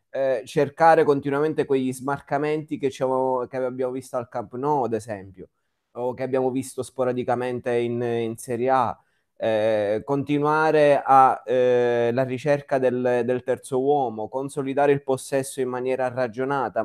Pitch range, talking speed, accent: 115-140 Hz, 135 wpm, native